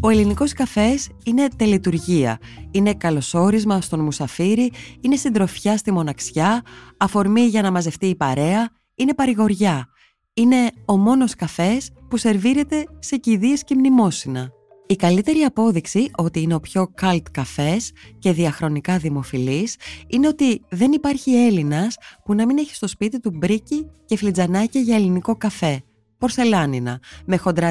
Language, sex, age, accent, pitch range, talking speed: Greek, female, 20-39, native, 160-235 Hz, 135 wpm